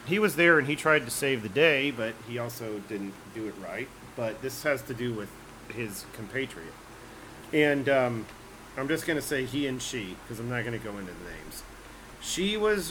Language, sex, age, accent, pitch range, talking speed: English, male, 40-59, American, 120-150 Hz, 215 wpm